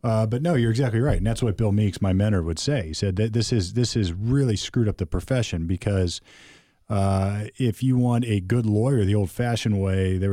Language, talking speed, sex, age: English, 225 wpm, male, 40-59